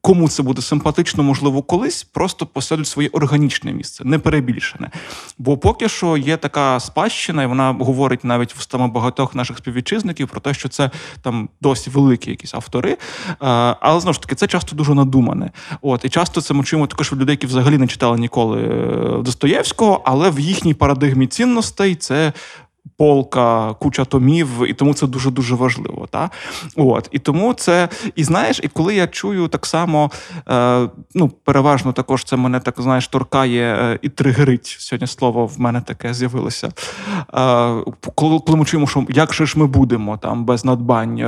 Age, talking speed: 20-39, 170 wpm